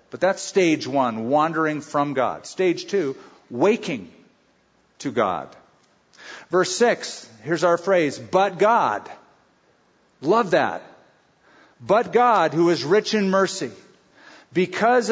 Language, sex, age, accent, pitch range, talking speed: English, male, 50-69, American, 140-185 Hz, 115 wpm